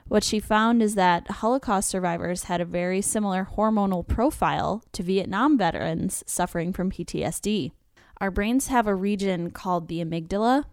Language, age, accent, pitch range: English, 10-29, American, 180-215 Hz